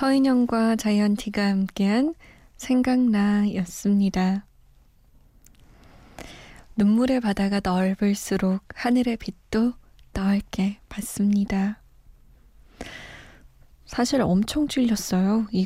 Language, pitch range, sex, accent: Korean, 190-225 Hz, female, native